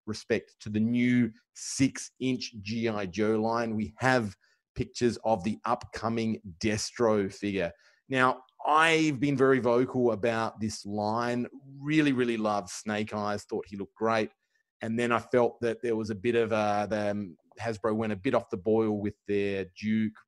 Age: 30-49